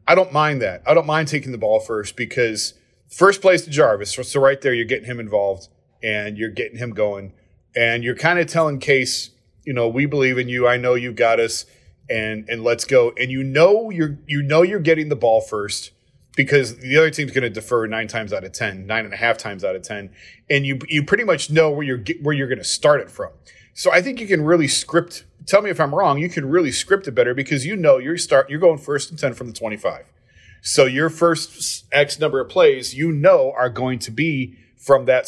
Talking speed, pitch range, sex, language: 240 wpm, 115-155 Hz, male, English